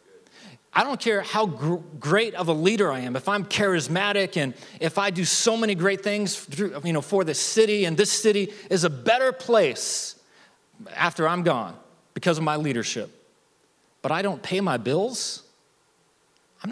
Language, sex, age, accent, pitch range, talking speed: English, male, 30-49, American, 160-210 Hz, 160 wpm